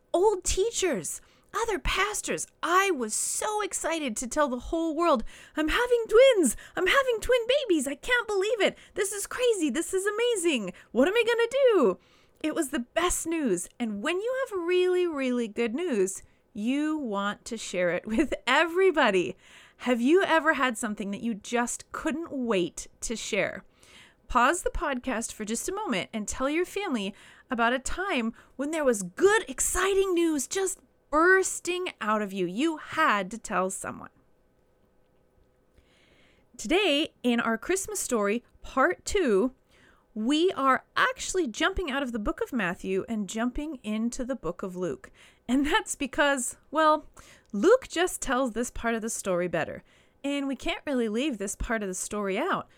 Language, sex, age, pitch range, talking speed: English, female, 30-49, 230-360 Hz, 165 wpm